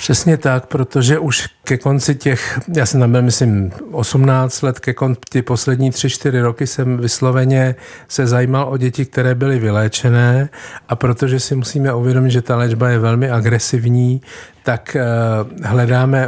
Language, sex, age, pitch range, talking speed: Czech, male, 50-69, 115-130 Hz, 150 wpm